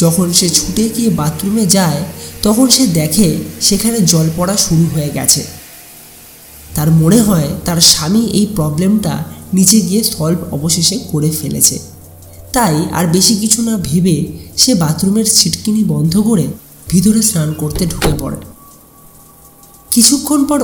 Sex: male